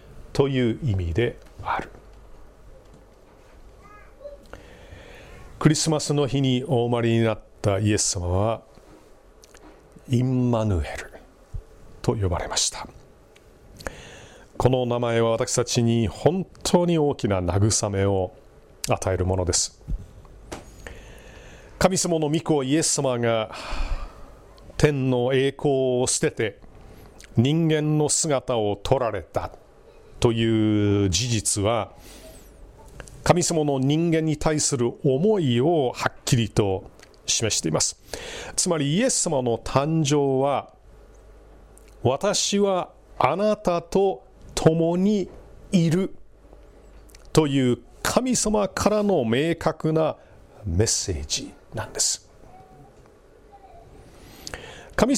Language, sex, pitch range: Japanese, male, 115-165 Hz